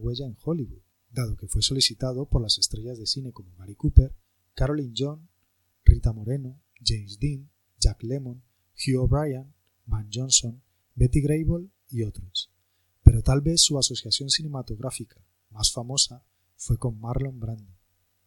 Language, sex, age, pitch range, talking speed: Spanish, male, 30-49, 95-130 Hz, 140 wpm